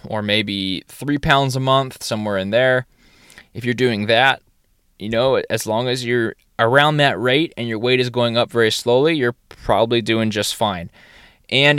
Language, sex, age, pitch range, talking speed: English, male, 20-39, 105-125 Hz, 185 wpm